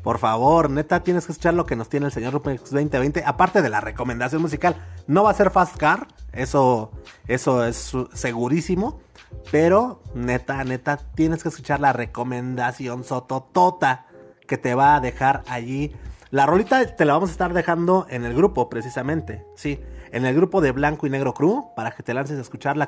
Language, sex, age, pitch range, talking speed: Spanish, male, 30-49, 120-170 Hz, 185 wpm